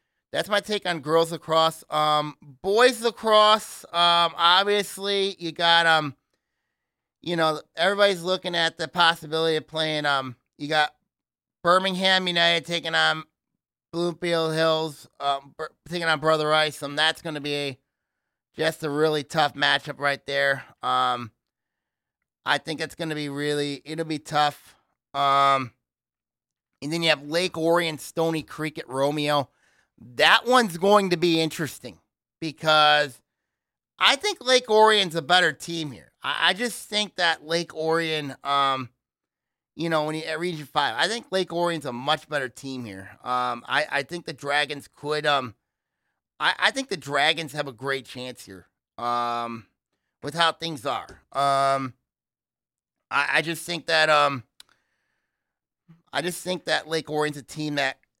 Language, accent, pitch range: English, American, 140-170 Hz